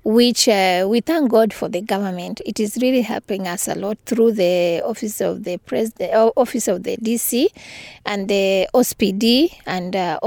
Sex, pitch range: female, 200-240 Hz